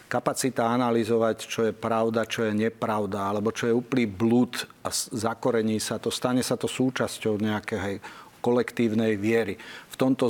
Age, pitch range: 40-59, 110-120 Hz